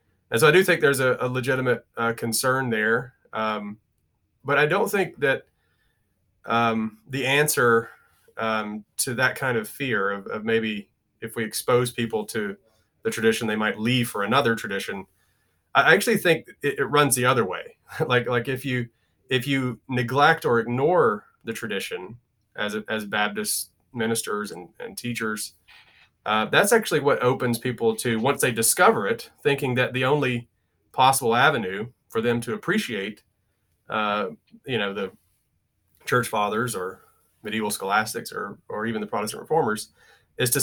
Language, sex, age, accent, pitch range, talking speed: English, male, 30-49, American, 105-125 Hz, 160 wpm